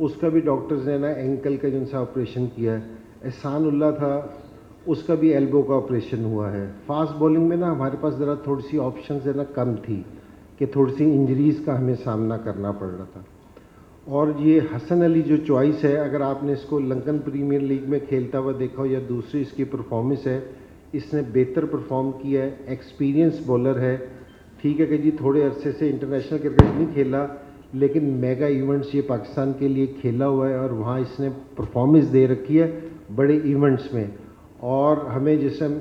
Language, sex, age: Urdu, male, 50-69